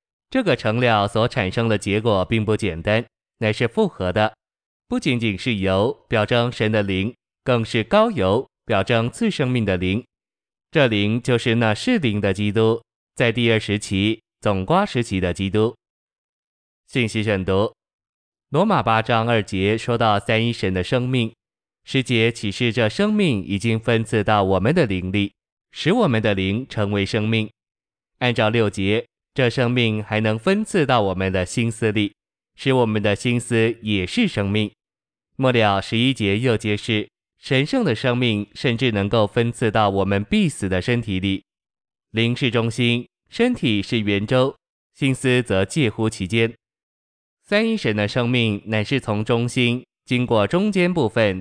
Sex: male